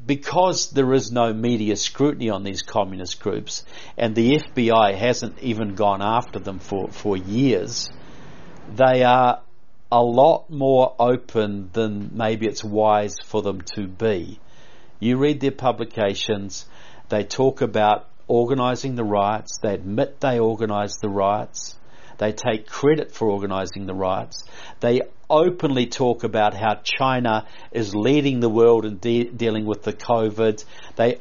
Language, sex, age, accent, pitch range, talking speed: English, male, 50-69, Australian, 110-130 Hz, 140 wpm